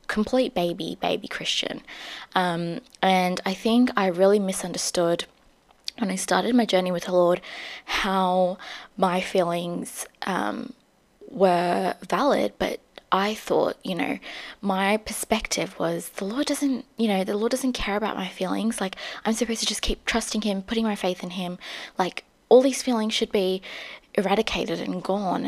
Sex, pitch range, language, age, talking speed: female, 185-250 Hz, English, 20-39, 160 wpm